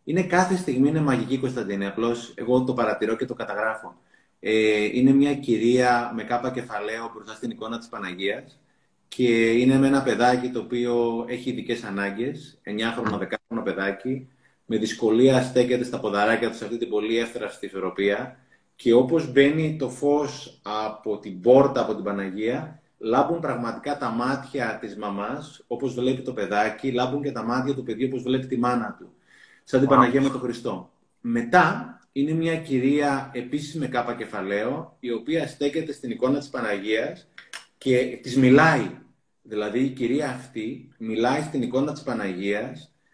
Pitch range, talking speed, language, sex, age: 115-135 Hz, 155 wpm, Greek, male, 30-49